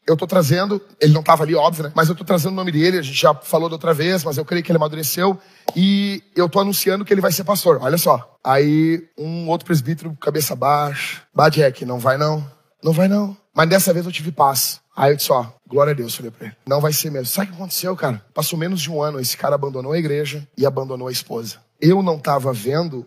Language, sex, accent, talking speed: Portuguese, male, Brazilian, 250 wpm